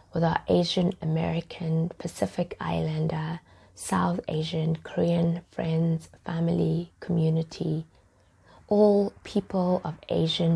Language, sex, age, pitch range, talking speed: English, female, 20-39, 155-180 Hz, 90 wpm